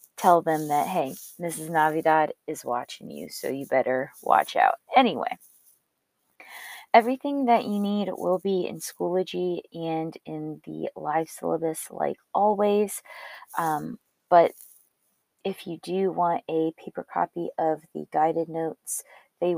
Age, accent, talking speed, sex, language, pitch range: 20-39, American, 135 wpm, female, English, 155-180 Hz